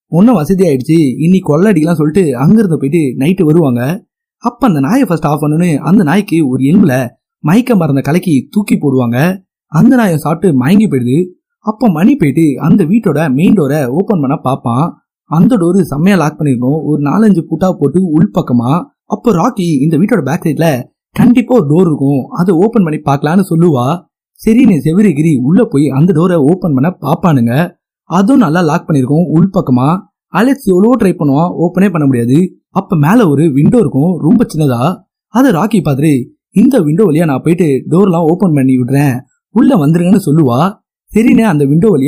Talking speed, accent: 130 wpm, native